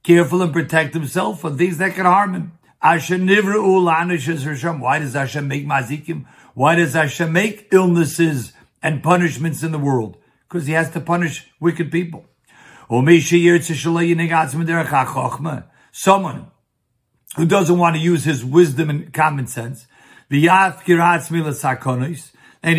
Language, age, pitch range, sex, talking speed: English, 60-79, 145-175 Hz, male, 115 wpm